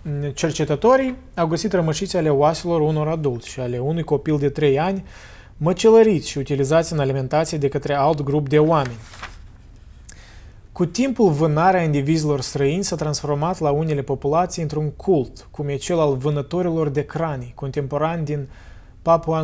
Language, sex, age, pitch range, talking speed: Romanian, male, 20-39, 140-175 Hz, 150 wpm